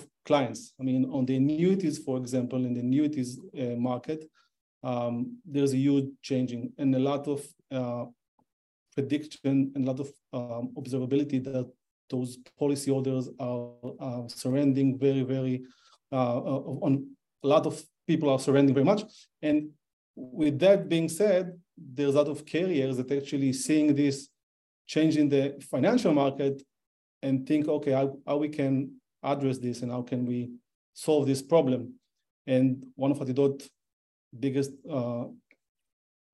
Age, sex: 40-59, male